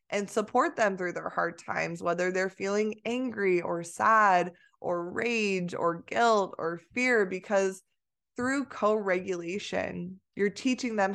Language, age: English, 20-39